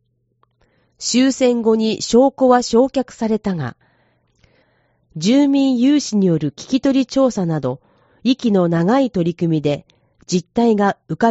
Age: 40-59